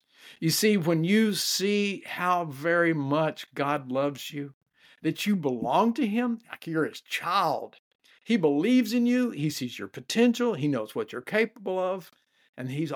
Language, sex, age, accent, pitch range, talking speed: English, male, 50-69, American, 125-170 Hz, 165 wpm